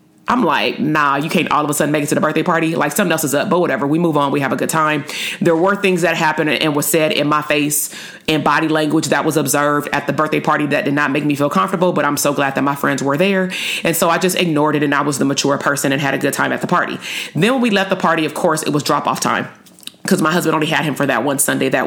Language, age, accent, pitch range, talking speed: English, 30-49, American, 150-180 Hz, 300 wpm